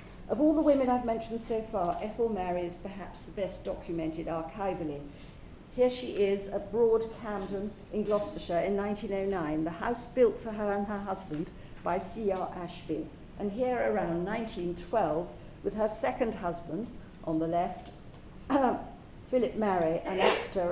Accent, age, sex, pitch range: British, 50-69, female, 175-220 Hz